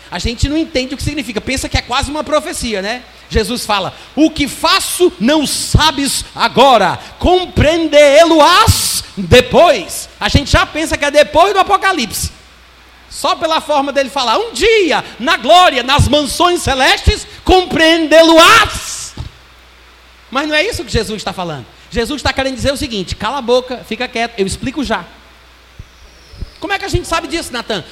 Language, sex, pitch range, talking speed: Portuguese, male, 220-310 Hz, 165 wpm